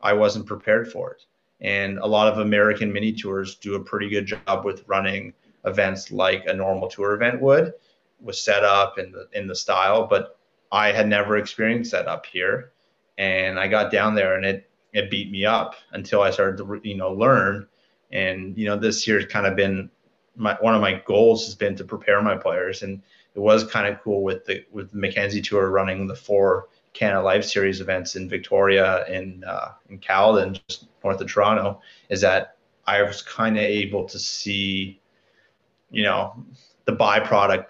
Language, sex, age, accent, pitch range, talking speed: English, male, 30-49, American, 95-110 Hz, 195 wpm